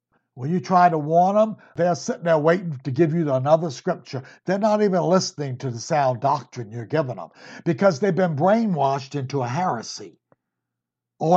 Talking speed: 180 wpm